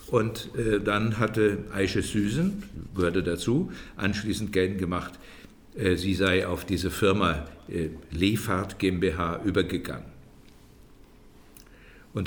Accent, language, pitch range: German, German, 95-120 Hz